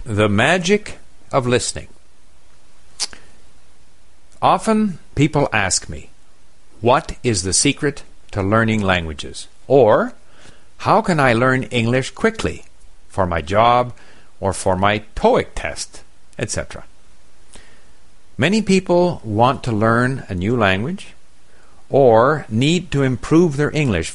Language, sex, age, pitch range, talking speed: English, male, 50-69, 75-120 Hz, 110 wpm